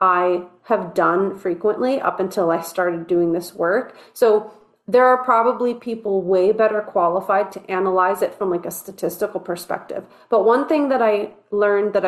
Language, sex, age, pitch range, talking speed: English, female, 30-49, 195-250 Hz, 170 wpm